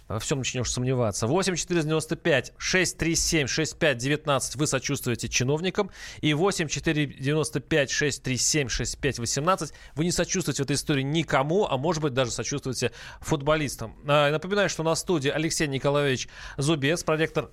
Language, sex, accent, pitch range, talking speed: Russian, male, native, 130-165 Hz, 105 wpm